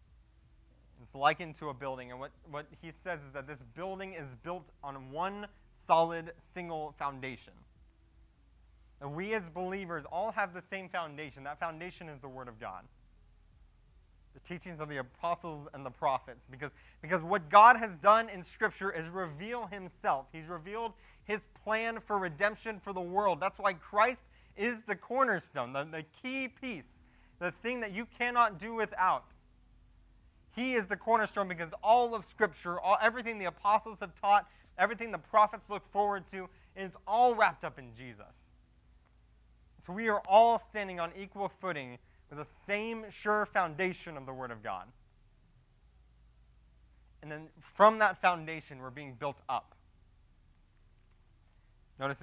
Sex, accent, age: male, American, 20-39